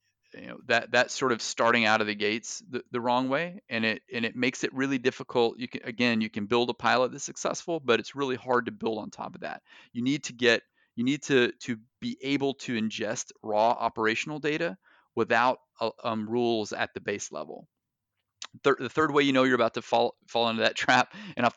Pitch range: 115-140 Hz